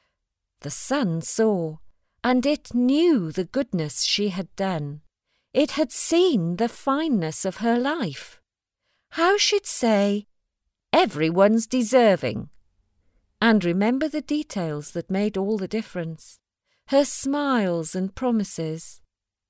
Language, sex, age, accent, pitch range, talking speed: English, female, 40-59, British, 165-240 Hz, 115 wpm